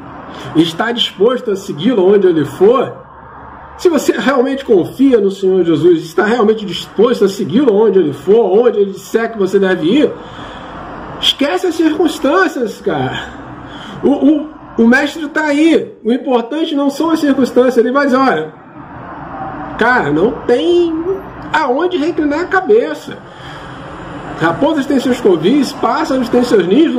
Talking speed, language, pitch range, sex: 140 wpm, Portuguese, 220-325 Hz, male